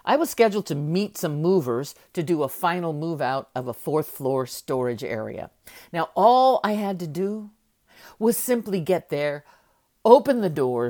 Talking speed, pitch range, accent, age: 175 wpm, 145-225 Hz, American, 50-69